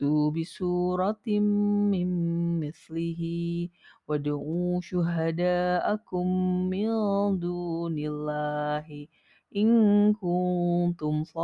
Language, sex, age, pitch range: Indonesian, female, 30-49, 150-195 Hz